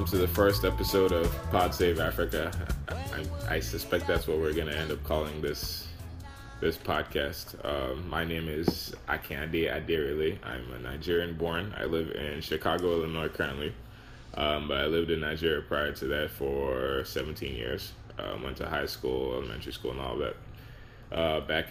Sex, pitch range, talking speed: male, 75-95 Hz, 175 wpm